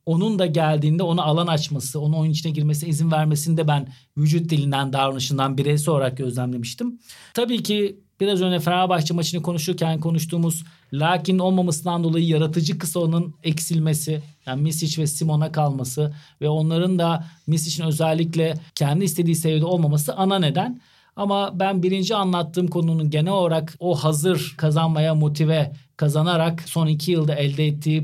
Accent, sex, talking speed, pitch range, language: native, male, 145 wpm, 150-180 Hz, Turkish